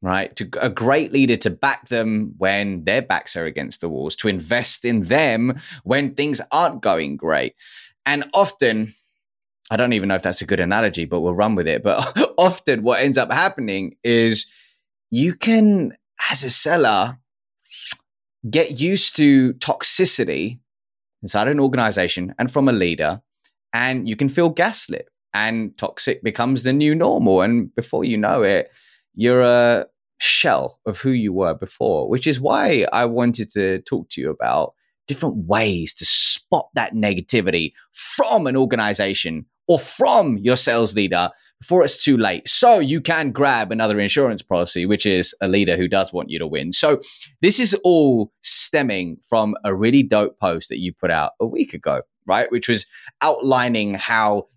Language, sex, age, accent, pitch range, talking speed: English, male, 20-39, British, 100-140 Hz, 170 wpm